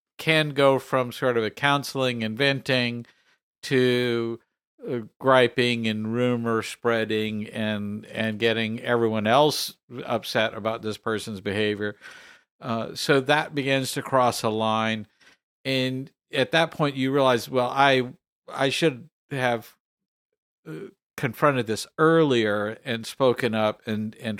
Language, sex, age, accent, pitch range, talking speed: English, male, 50-69, American, 110-140 Hz, 130 wpm